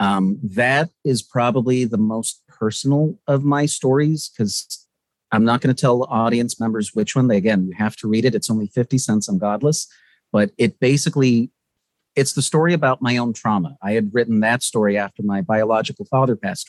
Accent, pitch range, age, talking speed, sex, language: American, 110-130 Hz, 40-59, 195 wpm, male, English